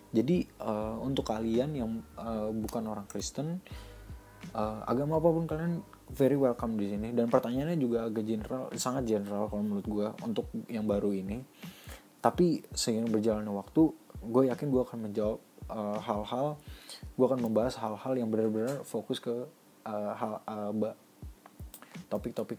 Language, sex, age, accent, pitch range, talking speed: Indonesian, male, 20-39, native, 105-125 Hz, 140 wpm